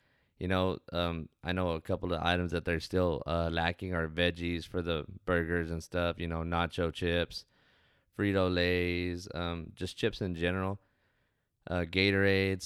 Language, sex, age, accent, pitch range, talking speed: English, male, 20-39, American, 85-90 Hz, 155 wpm